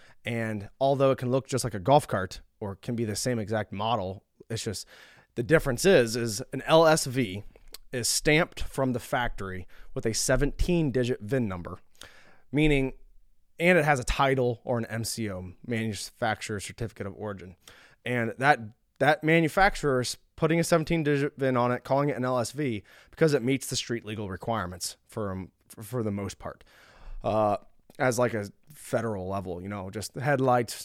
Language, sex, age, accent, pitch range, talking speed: English, male, 20-39, American, 105-130 Hz, 170 wpm